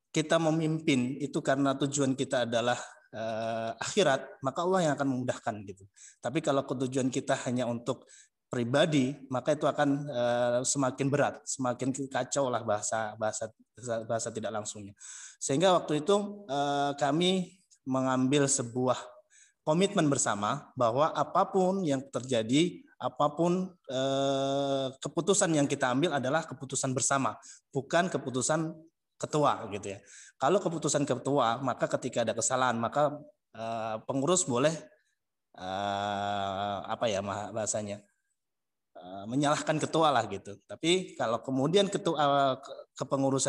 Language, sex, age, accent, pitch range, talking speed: Indonesian, male, 20-39, native, 120-155 Hz, 120 wpm